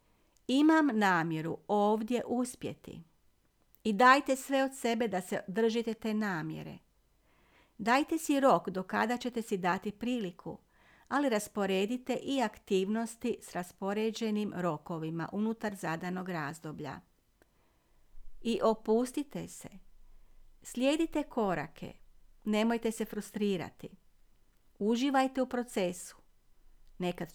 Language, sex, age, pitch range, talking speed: Croatian, female, 50-69, 175-235 Hz, 95 wpm